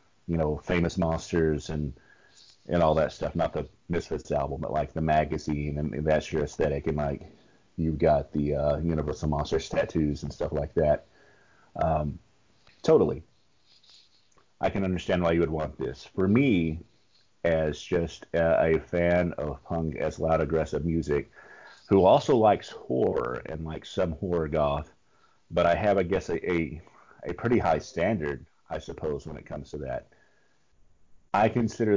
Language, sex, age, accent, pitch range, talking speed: English, male, 40-59, American, 75-90 Hz, 165 wpm